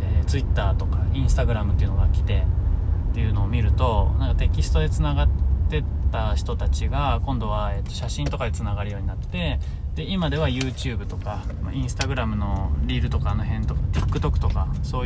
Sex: male